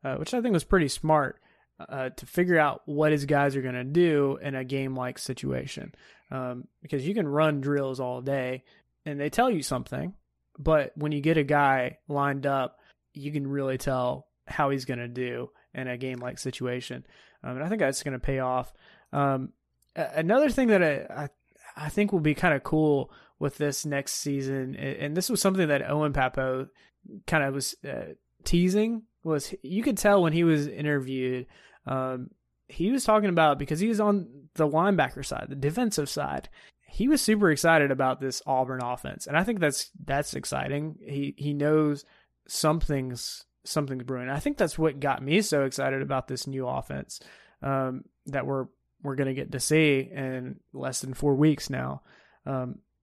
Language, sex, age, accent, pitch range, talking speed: English, male, 20-39, American, 130-155 Hz, 185 wpm